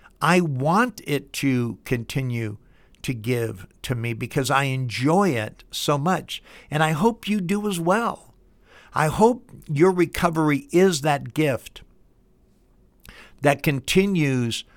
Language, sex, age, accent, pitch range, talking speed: English, male, 60-79, American, 120-150 Hz, 125 wpm